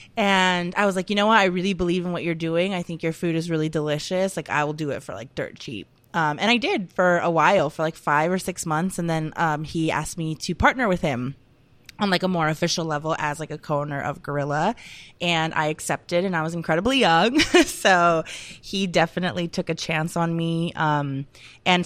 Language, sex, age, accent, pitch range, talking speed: English, female, 20-39, American, 150-180 Hz, 230 wpm